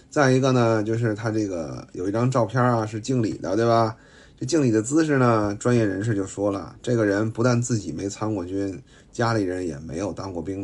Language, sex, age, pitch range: Chinese, male, 30-49, 100-125 Hz